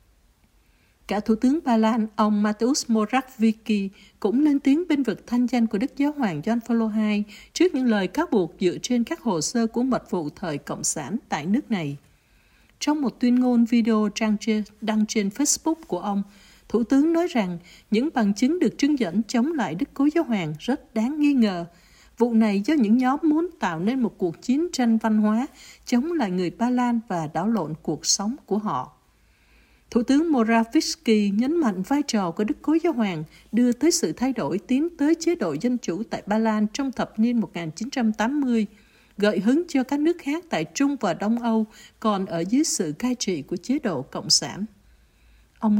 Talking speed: 195 wpm